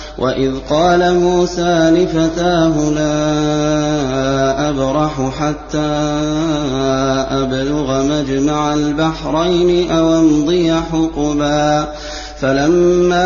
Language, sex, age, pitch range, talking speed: Arabic, male, 30-49, 150-165 Hz, 65 wpm